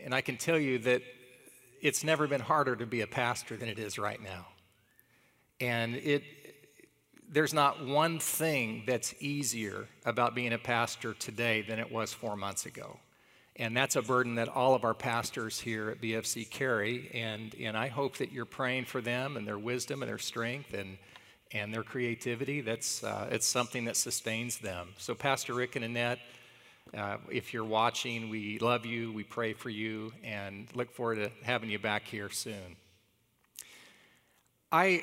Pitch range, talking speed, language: 115-130 Hz, 175 wpm, English